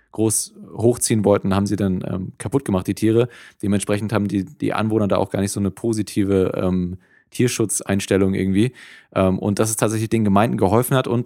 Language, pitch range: German, 100-110 Hz